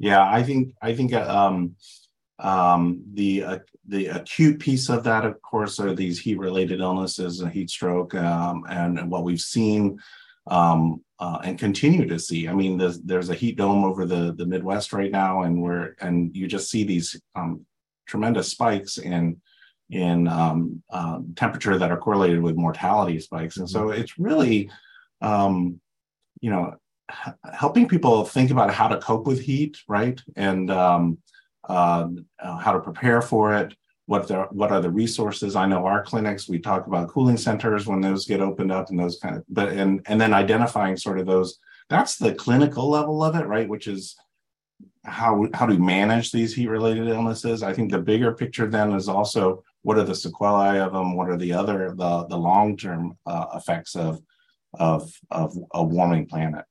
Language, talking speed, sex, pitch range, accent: English, 185 wpm, male, 90-110 Hz, American